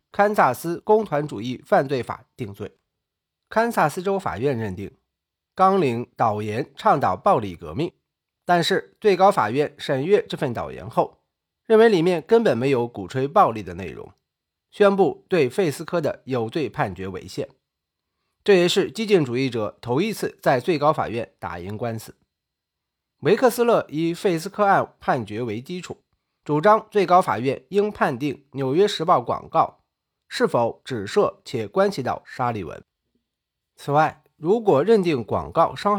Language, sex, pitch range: Chinese, male, 120-195 Hz